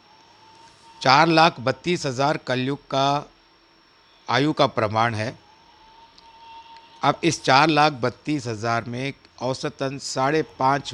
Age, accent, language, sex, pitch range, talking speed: 60-79, native, Hindi, male, 120-165 Hz, 110 wpm